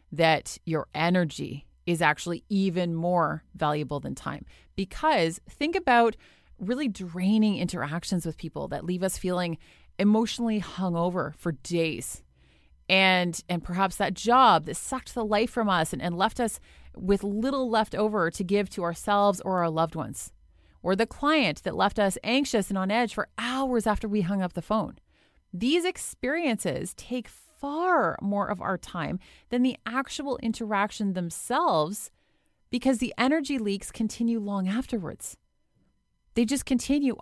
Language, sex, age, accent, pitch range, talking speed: English, female, 30-49, American, 180-240 Hz, 150 wpm